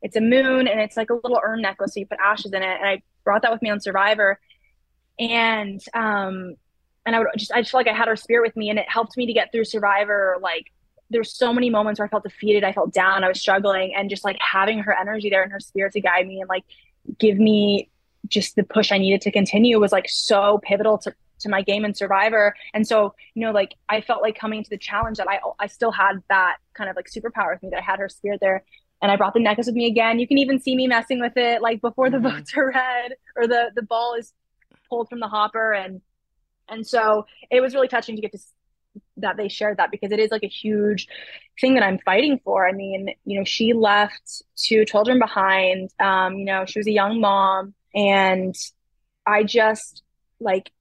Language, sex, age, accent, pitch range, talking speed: English, female, 20-39, American, 195-230 Hz, 240 wpm